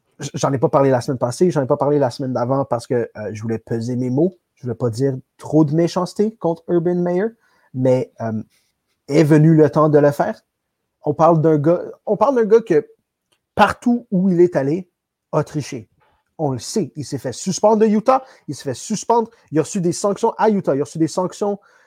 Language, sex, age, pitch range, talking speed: French, male, 30-49, 140-190 Hz, 215 wpm